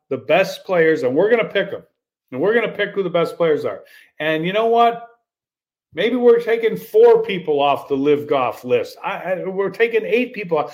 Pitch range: 175-250 Hz